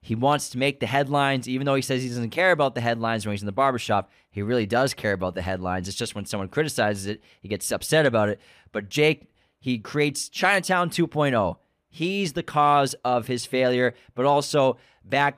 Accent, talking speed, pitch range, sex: American, 210 wpm, 115-145 Hz, male